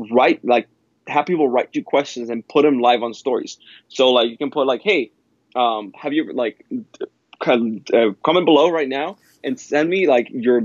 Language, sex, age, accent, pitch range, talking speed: English, male, 20-39, American, 110-140 Hz, 205 wpm